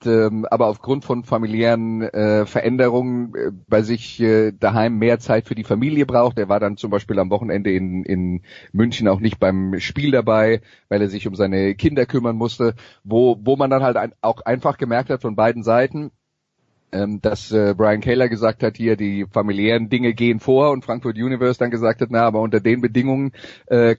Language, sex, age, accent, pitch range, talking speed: German, male, 30-49, German, 105-125 Hz, 190 wpm